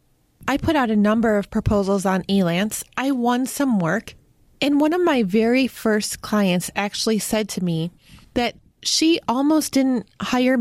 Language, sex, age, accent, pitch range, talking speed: English, female, 20-39, American, 185-245 Hz, 165 wpm